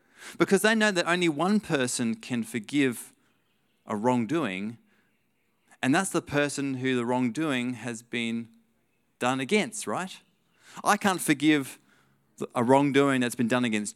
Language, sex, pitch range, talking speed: English, male, 115-160 Hz, 140 wpm